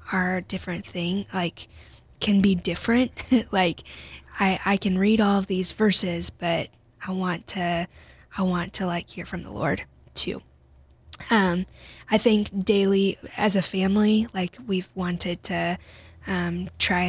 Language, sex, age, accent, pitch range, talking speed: English, female, 10-29, American, 175-195 Hz, 150 wpm